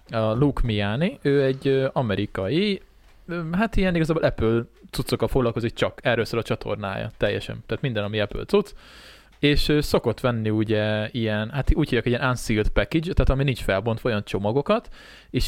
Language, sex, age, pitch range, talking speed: Hungarian, male, 20-39, 115-155 Hz, 150 wpm